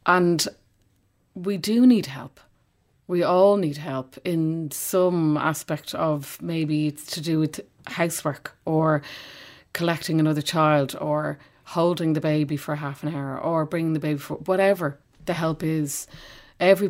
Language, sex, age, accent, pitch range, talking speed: English, female, 30-49, Irish, 150-170 Hz, 145 wpm